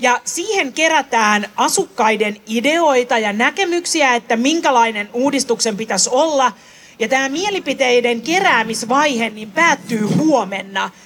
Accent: native